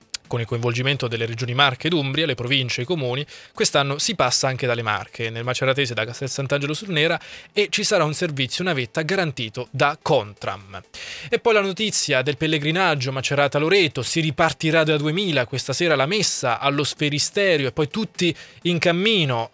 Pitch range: 120-150 Hz